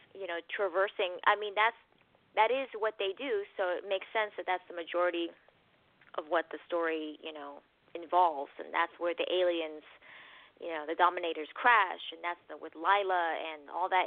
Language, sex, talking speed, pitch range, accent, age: English, female, 190 wpm, 175-240 Hz, American, 20-39